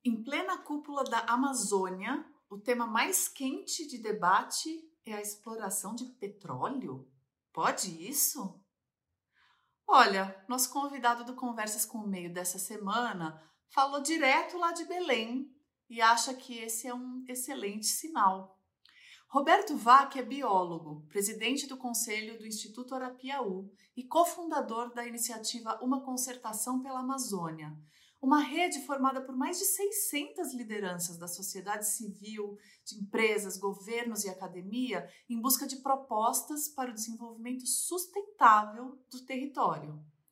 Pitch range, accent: 200-275 Hz, Brazilian